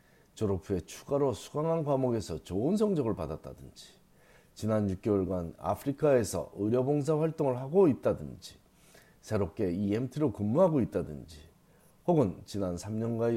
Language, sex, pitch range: Korean, male, 95-140 Hz